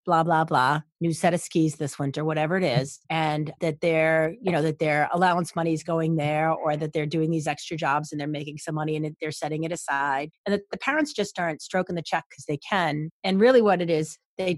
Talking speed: 245 wpm